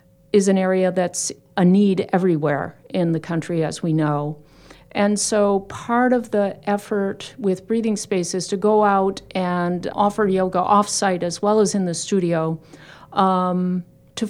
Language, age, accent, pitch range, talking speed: English, 50-69, American, 175-210 Hz, 160 wpm